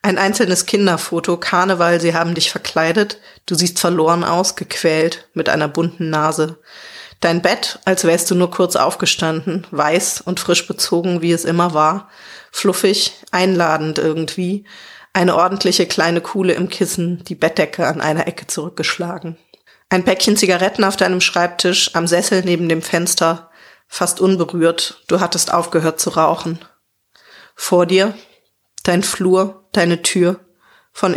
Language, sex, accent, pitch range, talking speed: English, female, German, 165-190 Hz, 140 wpm